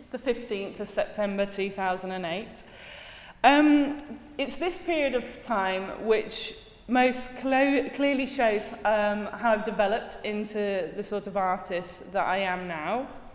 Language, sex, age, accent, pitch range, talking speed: English, female, 20-39, British, 195-260 Hz, 125 wpm